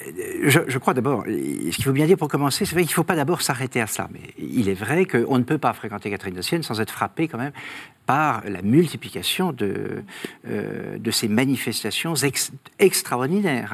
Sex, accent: male, French